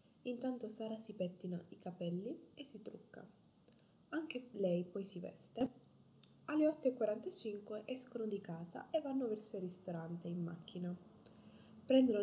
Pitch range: 180-240 Hz